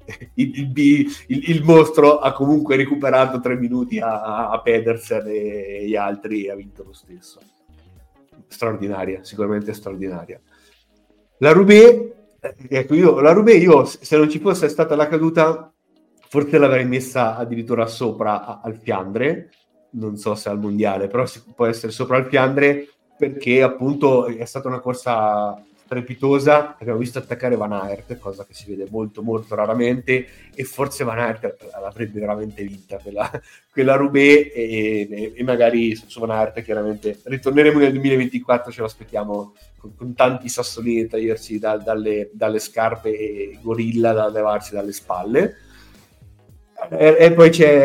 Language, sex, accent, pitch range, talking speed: Italian, male, native, 105-135 Hz, 150 wpm